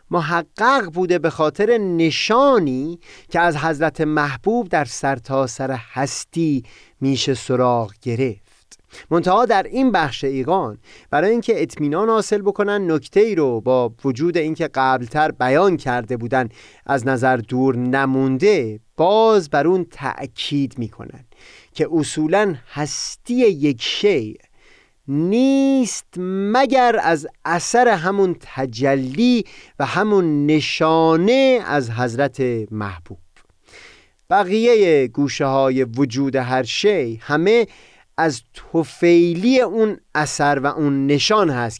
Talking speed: 110 wpm